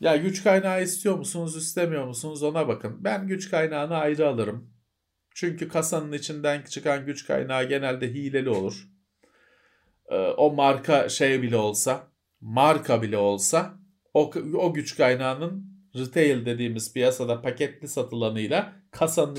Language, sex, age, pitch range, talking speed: Turkish, male, 40-59, 120-180 Hz, 125 wpm